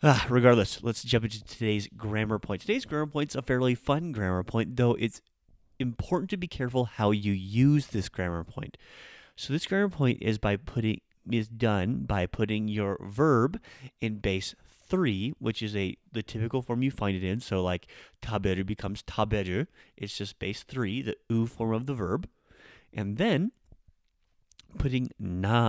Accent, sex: American, male